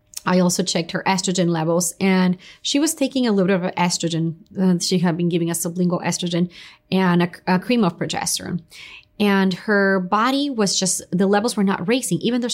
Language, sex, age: English, female, 20-39